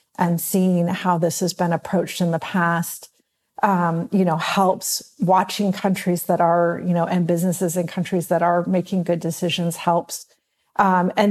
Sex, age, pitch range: female, 50-69, 175-195 Hz